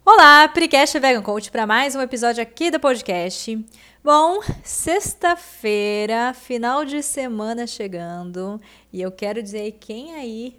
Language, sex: English, female